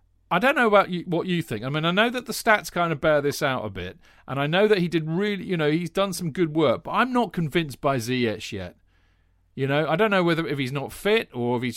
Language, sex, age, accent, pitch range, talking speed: English, male, 40-59, British, 125-180 Hz, 285 wpm